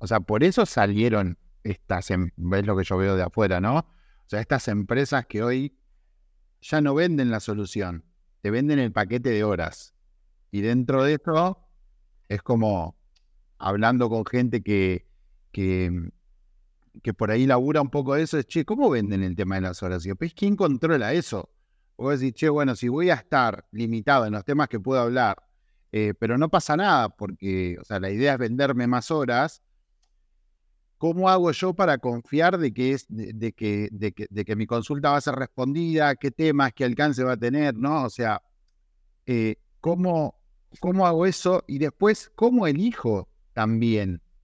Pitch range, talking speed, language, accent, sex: 95-140 Hz, 180 wpm, Spanish, Argentinian, male